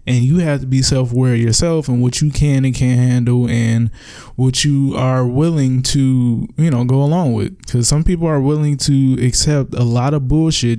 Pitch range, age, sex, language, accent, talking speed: 115-135 Hz, 20-39, male, English, American, 200 wpm